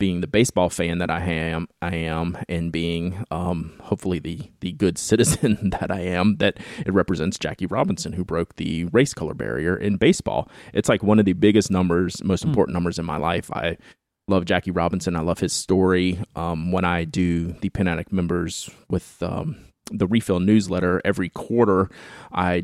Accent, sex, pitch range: American, male, 85-100 Hz